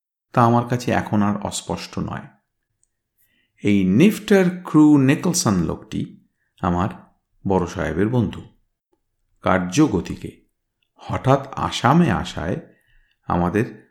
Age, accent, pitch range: 50-69, native, 90-140 Hz